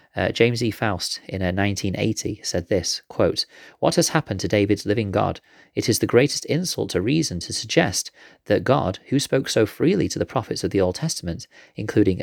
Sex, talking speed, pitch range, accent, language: male, 185 wpm, 90-125 Hz, British, English